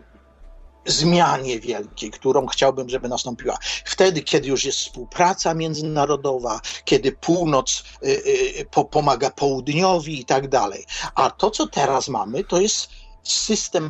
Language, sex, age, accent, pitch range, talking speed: Polish, male, 50-69, native, 130-195 Hz, 125 wpm